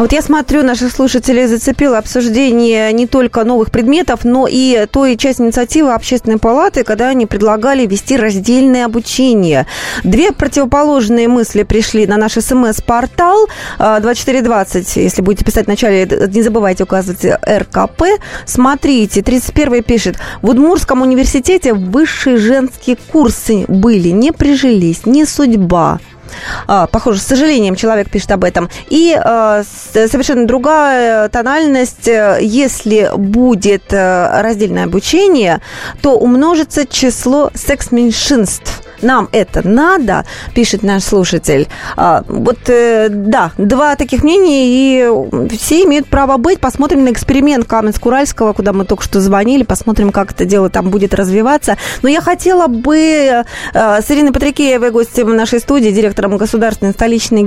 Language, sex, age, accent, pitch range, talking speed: Russian, female, 20-39, native, 215-270 Hz, 125 wpm